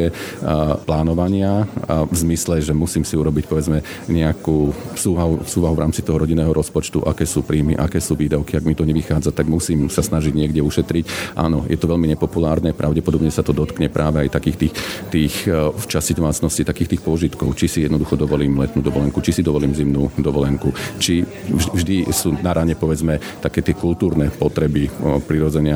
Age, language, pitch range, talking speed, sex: 40-59, Slovak, 75-85 Hz, 170 wpm, male